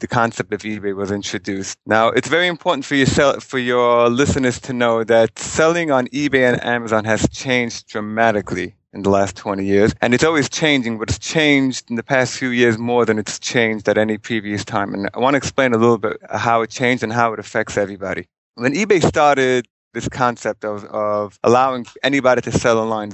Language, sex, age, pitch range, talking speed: English, male, 30-49, 110-125 Hz, 205 wpm